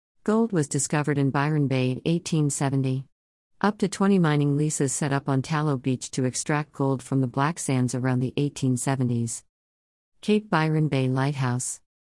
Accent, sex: American, female